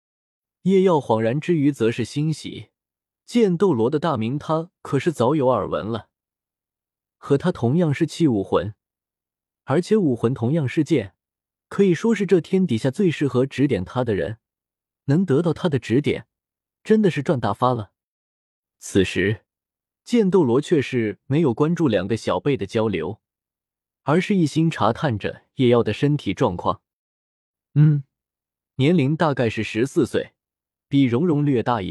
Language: Chinese